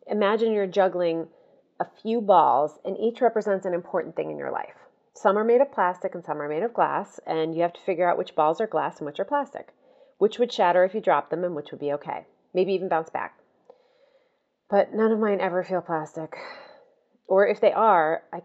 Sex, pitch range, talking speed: female, 175-250 Hz, 220 wpm